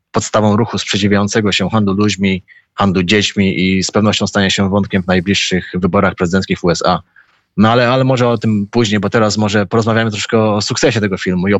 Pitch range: 105-130 Hz